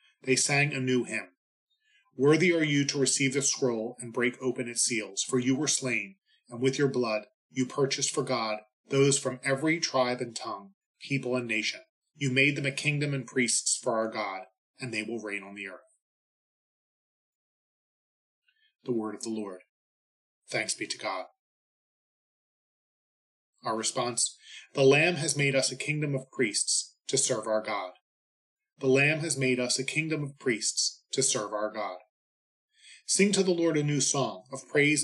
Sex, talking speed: male, 175 wpm